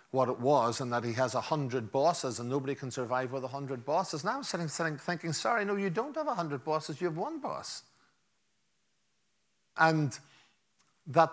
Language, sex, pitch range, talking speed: English, male, 130-175 Hz, 195 wpm